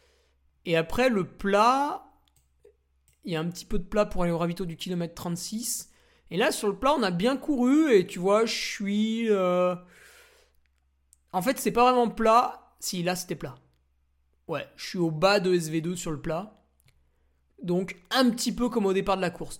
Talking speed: 195 wpm